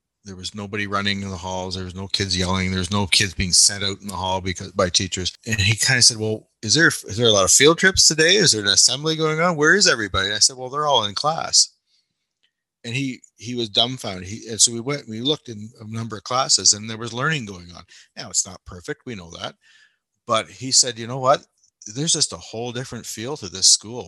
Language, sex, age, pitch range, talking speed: English, male, 30-49, 100-130 Hz, 255 wpm